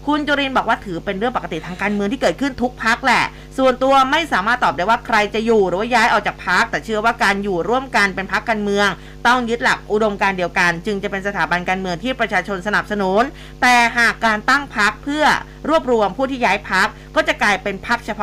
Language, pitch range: Thai, 185-240 Hz